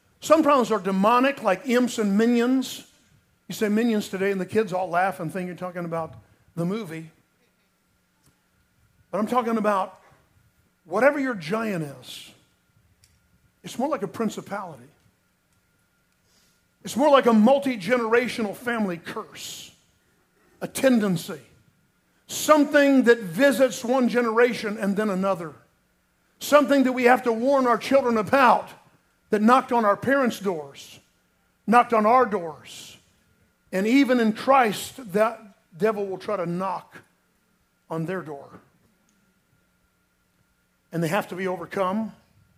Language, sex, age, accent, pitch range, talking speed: English, male, 50-69, American, 185-250 Hz, 130 wpm